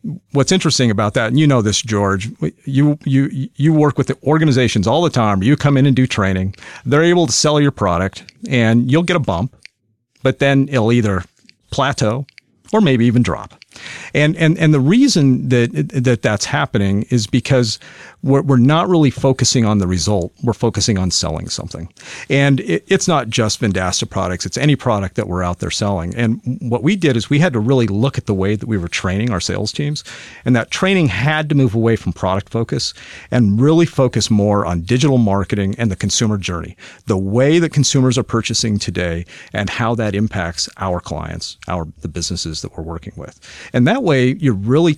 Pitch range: 100-140 Hz